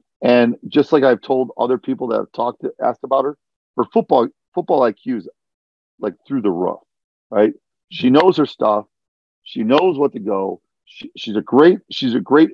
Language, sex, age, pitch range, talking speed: English, male, 40-59, 105-125 Hz, 190 wpm